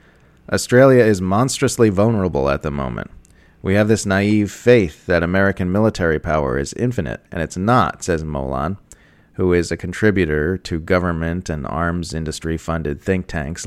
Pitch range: 80-105 Hz